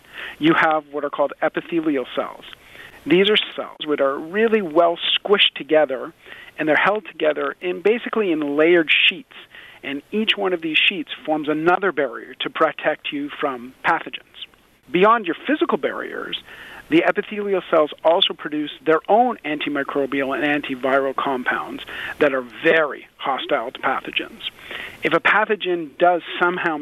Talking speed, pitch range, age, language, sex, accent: 145 wpm, 155-220 Hz, 40-59, English, male, American